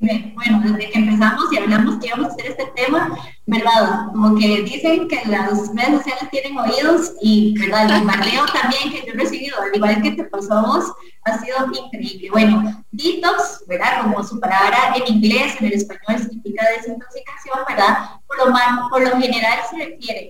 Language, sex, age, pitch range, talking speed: English, female, 20-39, 215-285 Hz, 175 wpm